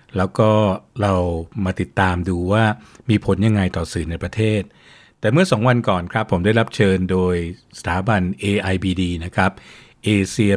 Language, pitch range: Thai, 90-110 Hz